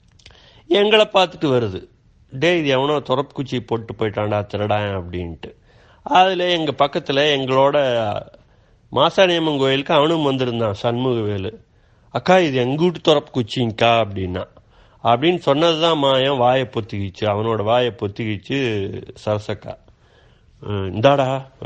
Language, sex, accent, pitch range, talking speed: Tamil, male, native, 110-150 Hz, 105 wpm